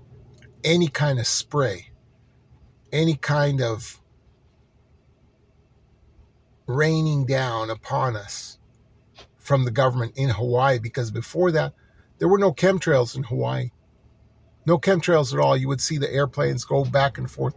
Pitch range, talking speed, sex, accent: 110-145 Hz, 130 wpm, male, American